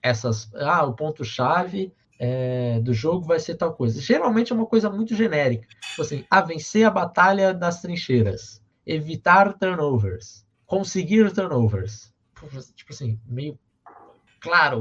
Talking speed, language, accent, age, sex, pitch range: 145 wpm, Portuguese, Brazilian, 20-39, male, 125-190 Hz